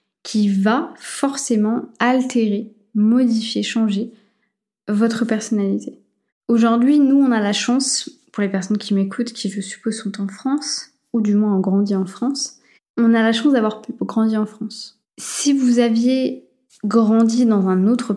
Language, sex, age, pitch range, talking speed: French, female, 20-39, 205-245 Hz, 155 wpm